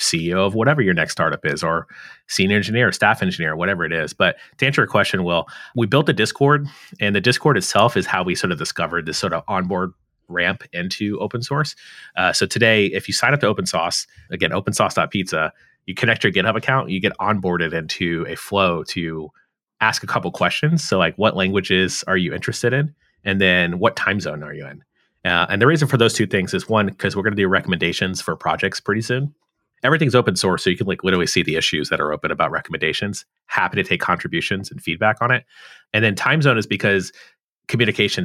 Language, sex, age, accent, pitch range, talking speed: English, male, 30-49, American, 95-120 Hz, 215 wpm